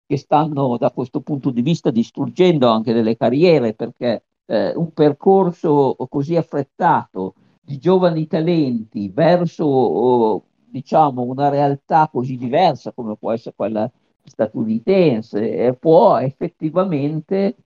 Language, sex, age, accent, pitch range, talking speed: Italian, male, 50-69, native, 120-160 Hz, 115 wpm